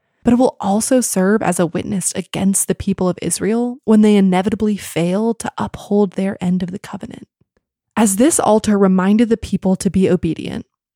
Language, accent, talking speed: English, American, 180 wpm